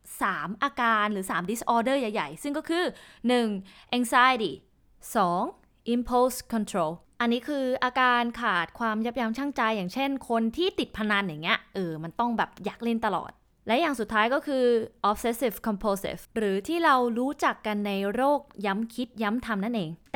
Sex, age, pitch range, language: female, 20-39, 210-275 Hz, Thai